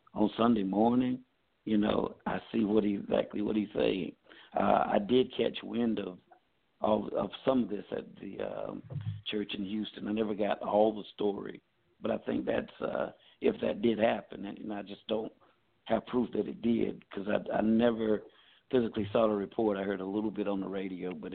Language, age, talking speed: English, 60-79, 200 wpm